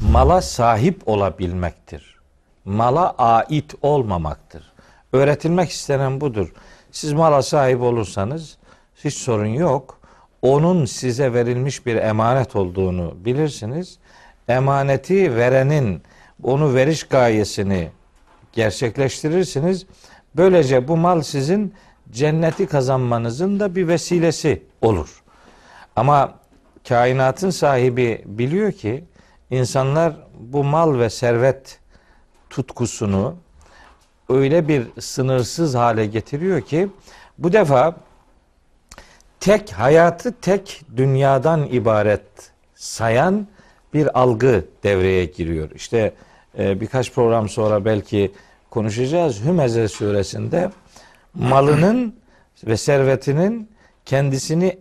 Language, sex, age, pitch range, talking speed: Turkish, male, 50-69, 110-160 Hz, 90 wpm